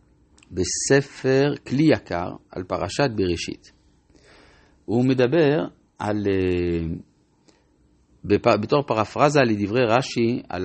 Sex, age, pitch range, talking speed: male, 50-69, 95-140 Hz, 80 wpm